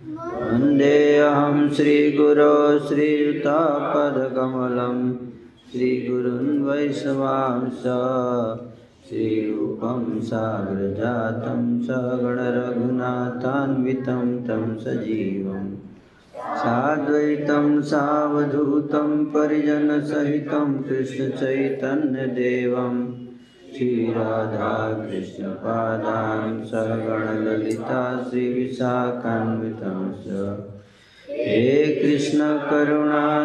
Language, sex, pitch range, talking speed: Hindi, male, 115-145 Hz, 45 wpm